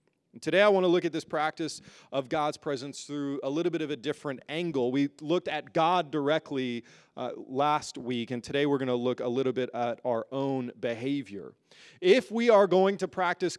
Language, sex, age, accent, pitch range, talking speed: English, male, 30-49, American, 135-170 Hz, 205 wpm